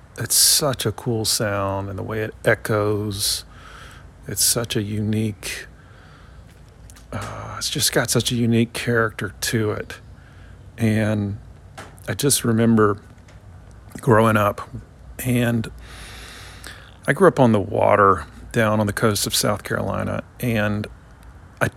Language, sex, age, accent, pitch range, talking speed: English, male, 40-59, American, 100-120 Hz, 125 wpm